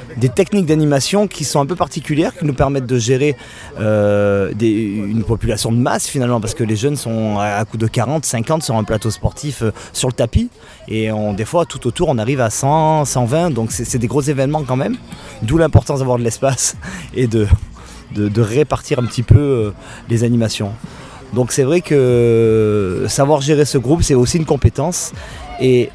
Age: 30-49